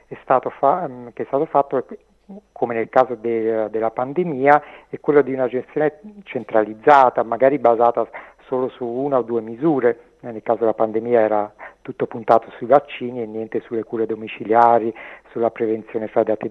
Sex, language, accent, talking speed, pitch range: male, Italian, native, 165 wpm, 115-130 Hz